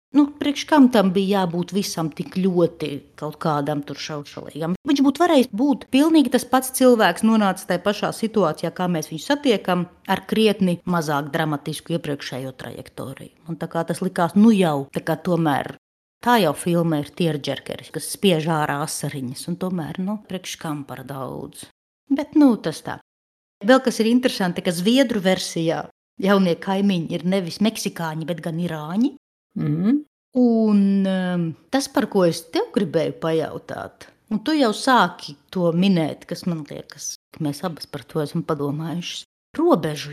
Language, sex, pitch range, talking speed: English, female, 160-235 Hz, 150 wpm